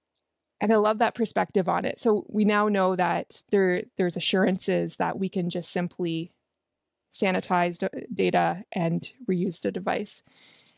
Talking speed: 145 wpm